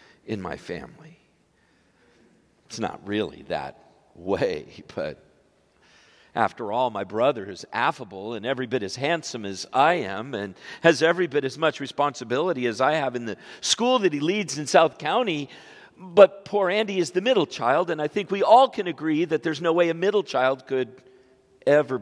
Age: 50-69